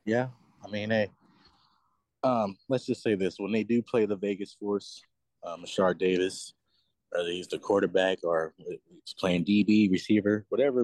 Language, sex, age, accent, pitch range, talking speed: English, male, 20-39, American, 95-115 Hz, 160 wpm